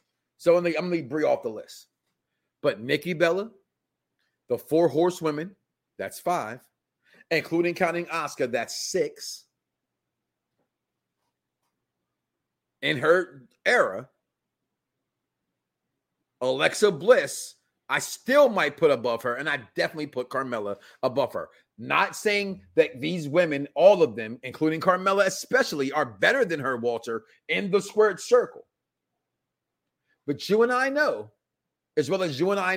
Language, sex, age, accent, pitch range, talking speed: English, male, 30-49, American, 150-215 Hz, 130 wpm